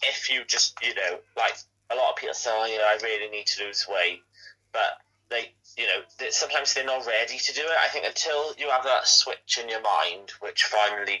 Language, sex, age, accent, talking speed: English, male, 30-49, British, 225 wpm